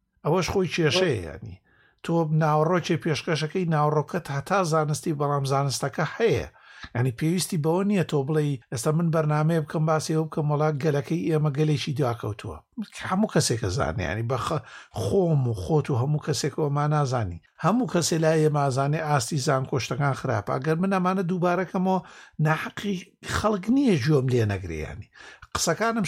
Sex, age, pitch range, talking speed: male, 60-79, 140-185 Hz, 175 wpm